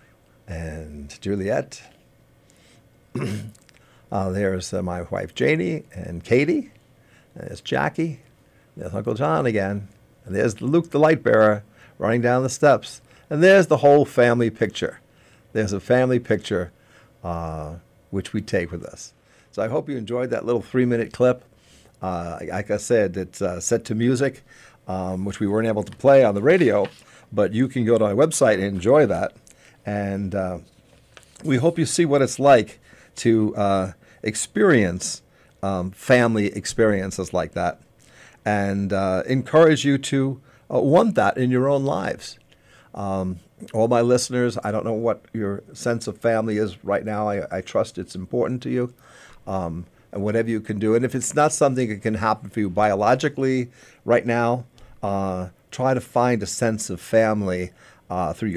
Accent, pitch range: American, 100-125 Hz